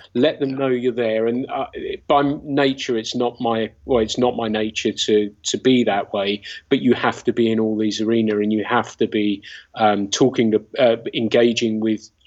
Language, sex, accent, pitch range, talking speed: English, male, British, 110-130 Hz, 200 wpm